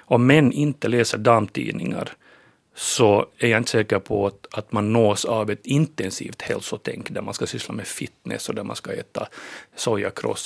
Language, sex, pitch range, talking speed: Finnish, male, 110-130 Hz, 180 wpm